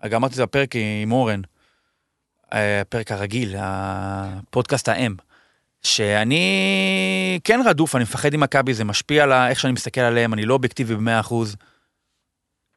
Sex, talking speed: male, 145 wpm